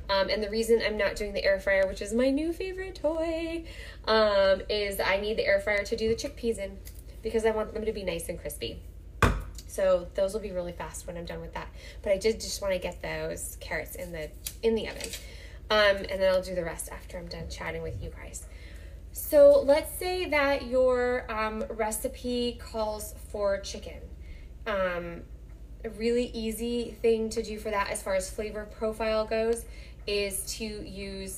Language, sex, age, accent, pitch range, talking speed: English, female, 10-29, American, 195-235 Hz, 195 wpm